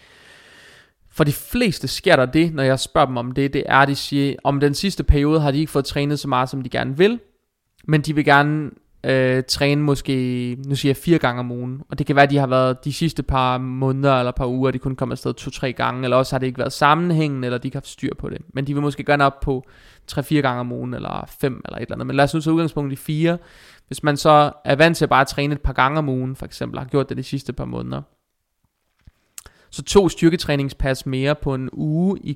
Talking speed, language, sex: 250 wpm, Danish, male